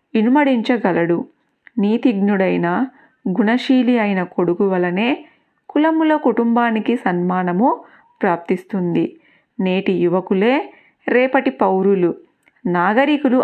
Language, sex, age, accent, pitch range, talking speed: Telugu, female, 30-49, native, 190-265 Hz, 65 wpm